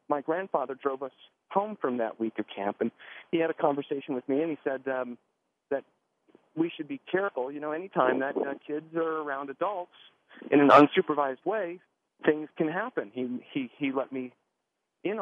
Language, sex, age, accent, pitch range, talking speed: English, male, 40-59, American, 130-165 Hz, 195 wpm